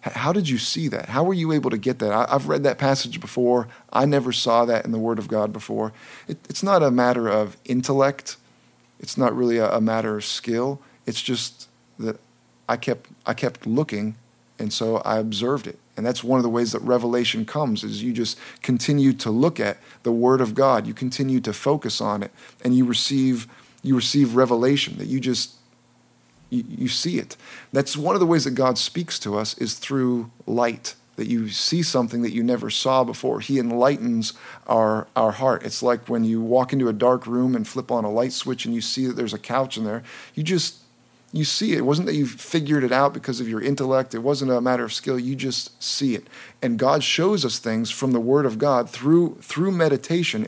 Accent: American